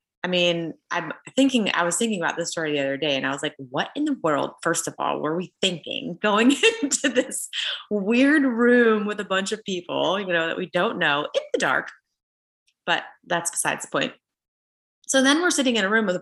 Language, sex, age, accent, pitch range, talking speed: English, female, 20-39, American, 170-230 Hz, 220 wpm